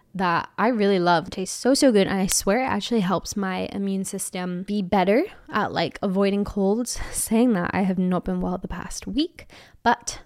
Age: 10-29